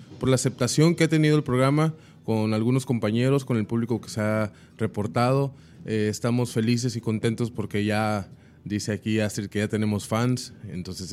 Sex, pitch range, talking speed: male, 105-130 Hz, 180 wpm